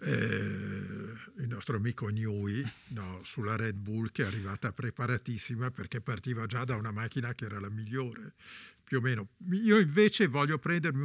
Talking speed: 165 wpm